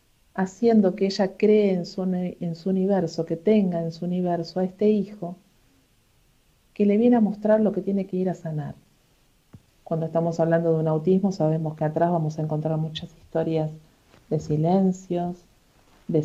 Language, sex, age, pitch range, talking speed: Spanish, female, 50-69, 160-195 Hz, 165 wpm